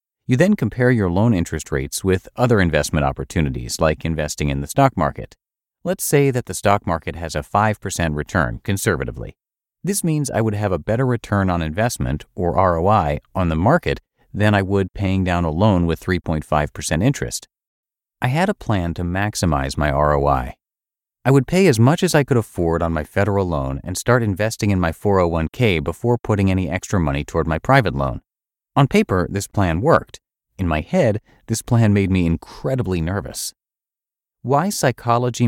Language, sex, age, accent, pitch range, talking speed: English, male, 40-59, American, 80-120 Hz, 180 wpm